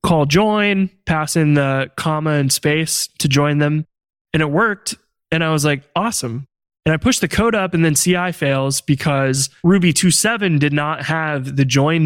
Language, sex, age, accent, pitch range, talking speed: English, male, 20-39, American, 140-165 Hz, 185 wpm